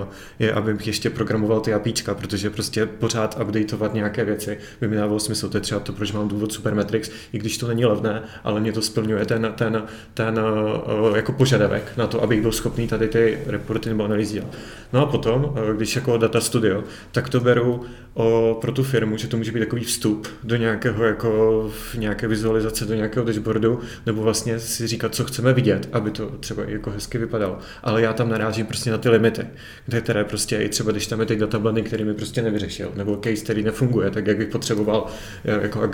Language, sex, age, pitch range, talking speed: Czech, male, 30-49, 110-115 Hz, 200 wpm